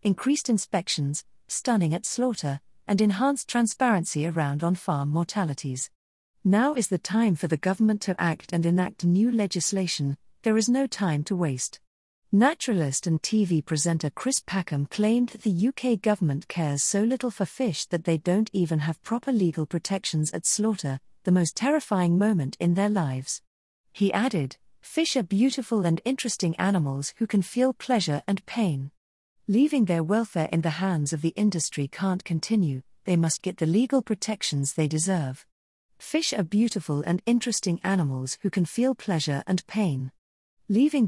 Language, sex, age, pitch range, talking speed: English, female, 40-59, 155-215 Hz, 160 wpm